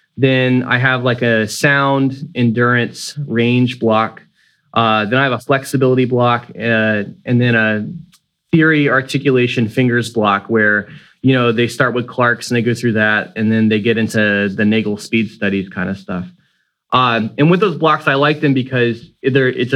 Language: English